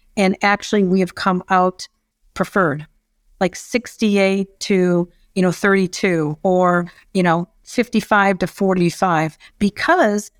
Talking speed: 115 wpm